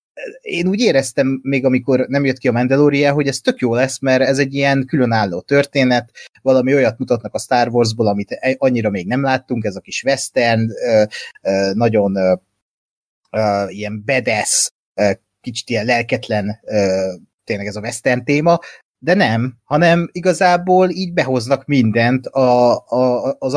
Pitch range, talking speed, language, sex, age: 115-145 Hz, 140 wpm, Hungarian, male, 30-49